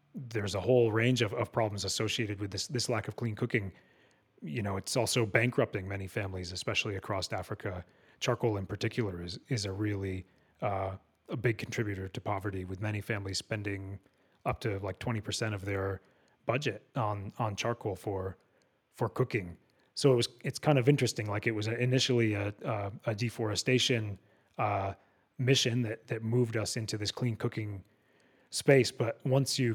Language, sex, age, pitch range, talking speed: English, male, 30-49, 100-120 Hz, 170 wpm